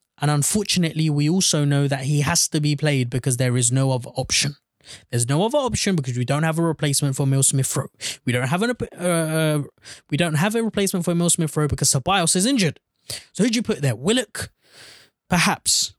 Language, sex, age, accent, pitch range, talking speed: English, male, 20-39, British, 140-195 Hz, 205 wpm